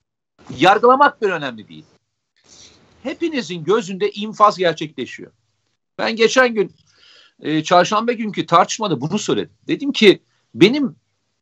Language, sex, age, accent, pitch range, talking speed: Turkish, male, 50-69, native, 165-225 Hz, 100 wpm